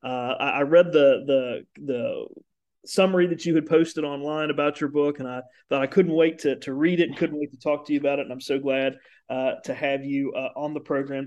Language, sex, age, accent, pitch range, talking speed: English, male, 40-59, American, 140-175 Hz, 250 wpm